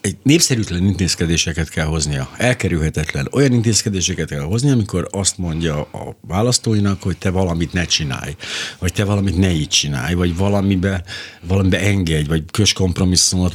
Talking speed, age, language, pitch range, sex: 145 wpm, 50-69, Hungarian, 85-110 Hz, male